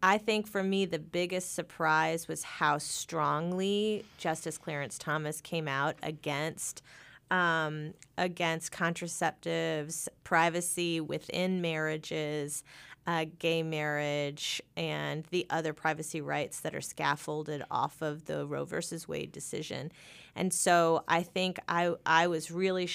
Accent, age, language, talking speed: American, 30-49, English, 125 wpm